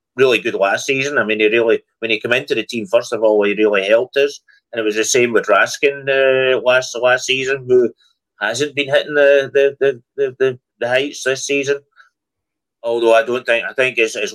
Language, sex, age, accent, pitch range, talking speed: English, male, 30-49, British, 110-145 Hz, 220 wpm